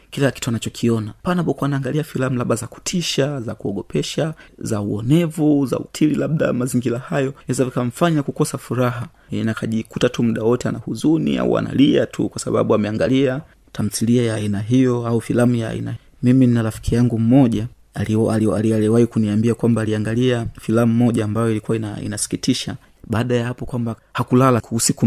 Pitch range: 110-130 Hz